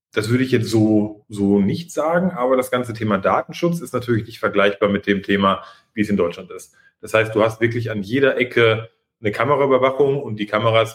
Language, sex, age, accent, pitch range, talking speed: German, male, 30-49, German, 100-125 Hz, 210 wpm